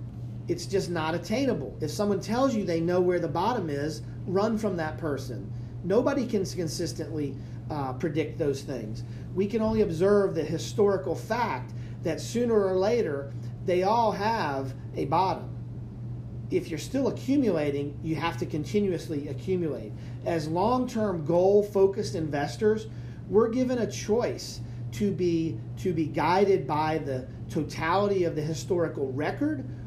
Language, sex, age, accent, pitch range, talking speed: English, male, 40-59, American, 120-185 Hz, 140 wpm